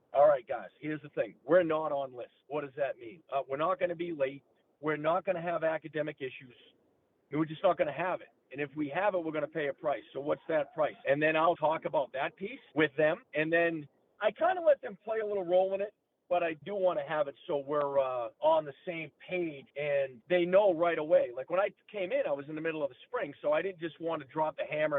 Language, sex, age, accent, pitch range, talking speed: English, male, 40-59, American, 145-185 Hz, 270 wpm